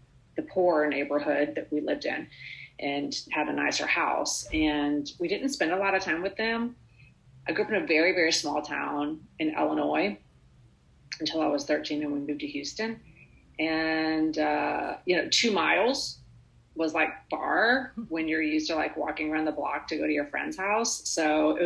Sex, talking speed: female, 190 wpm